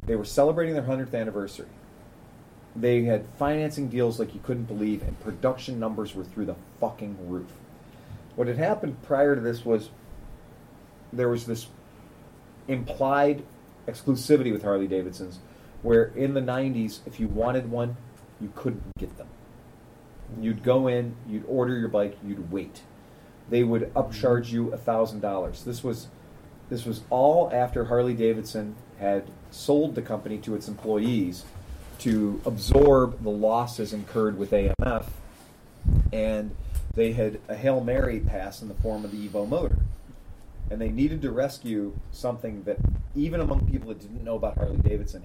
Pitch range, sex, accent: 105-125 Hz, male, American